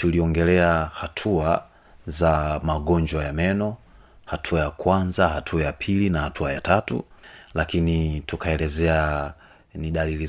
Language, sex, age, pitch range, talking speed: Swahili, male, 30-49, 75-85 Hz, 115 wpm